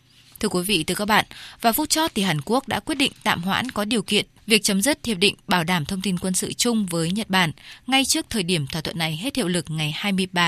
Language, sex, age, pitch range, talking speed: Vietnamese, female, 20-39, 170-225 Hz, 270 wpm